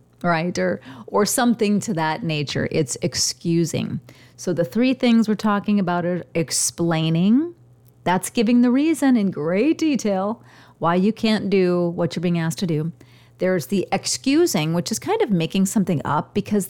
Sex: female